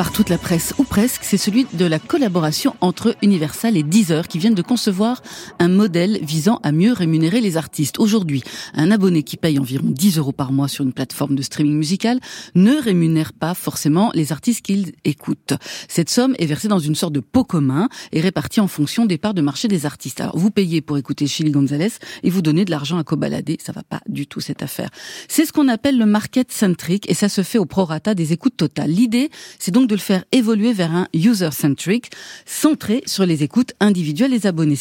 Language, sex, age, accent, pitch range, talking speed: French, female, 40-59, French, 155-225 Hz, 215 wpm